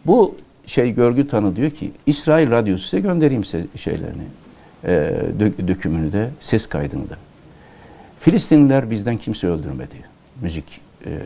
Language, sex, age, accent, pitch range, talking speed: Turkish, male, 60-79, native, 95-140 Hz, 130 wpm